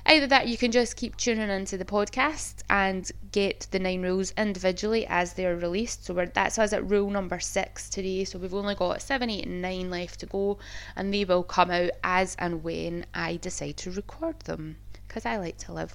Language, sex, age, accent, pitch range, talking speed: English, female, 20-39, British, 170-210 Hz, 210 wpm